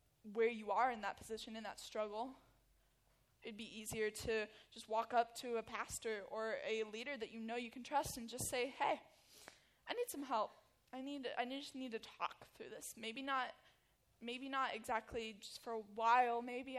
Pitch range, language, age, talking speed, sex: 220-250 Hz, English, 10-29, 200 wpm, female